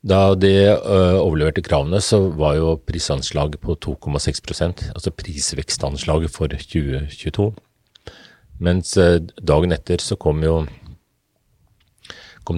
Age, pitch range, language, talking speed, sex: 40-59, 75-95 Hz, English, 100 wpm, male